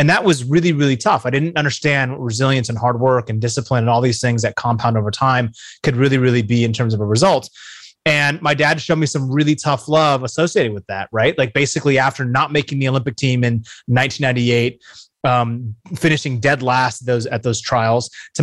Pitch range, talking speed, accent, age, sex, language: 125-155 Hz, 210 wpm, American, 30-49, male, English